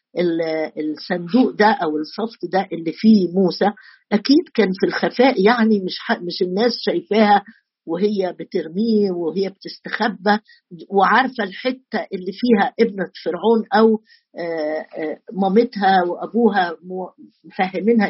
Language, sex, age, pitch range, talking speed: Arabic, female, 50-69, 190-235 Hz, 105 wpm